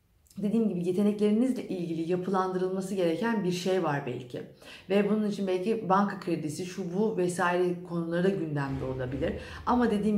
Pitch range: 170-215 Hz